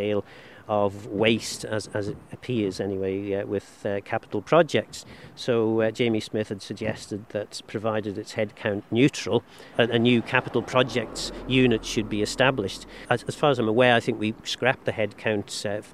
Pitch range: 100-120 Hz